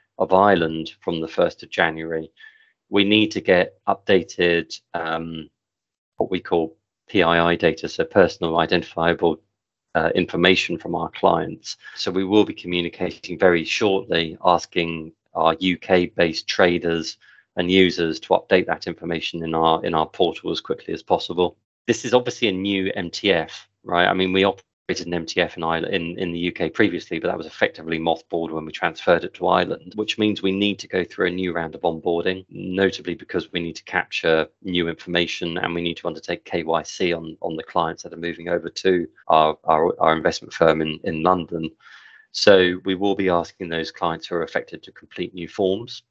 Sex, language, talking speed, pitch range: male, English, 180 wpm, 80-95 Hz